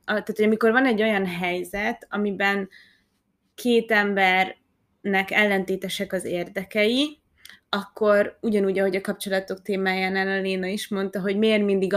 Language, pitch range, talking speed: Hungarian, 190-225 Hz, 125 wpm